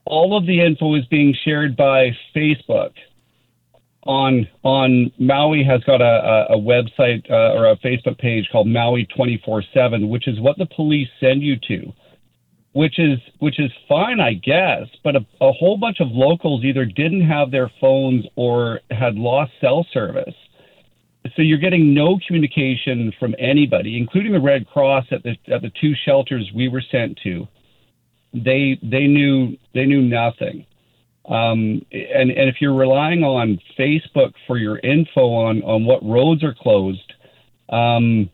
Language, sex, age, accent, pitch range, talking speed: English, male, 50-69, American, 120-150 Hz, 165 wpm